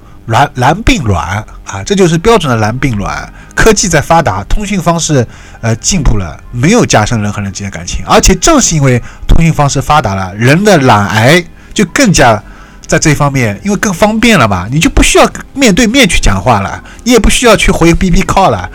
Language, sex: Chinese, male